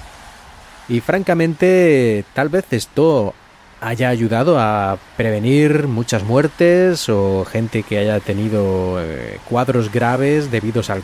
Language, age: Spanish, 30-49